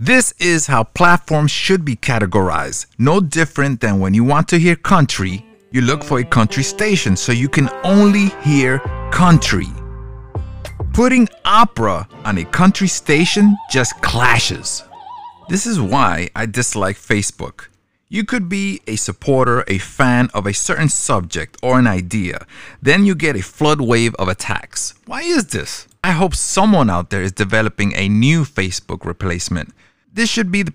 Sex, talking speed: male, 160 wpm